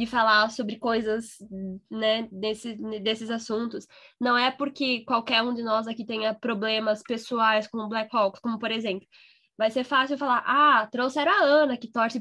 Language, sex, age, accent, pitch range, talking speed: Portuguese, female, 10-29, Brazilian, 220-285 Hz, 175 wpm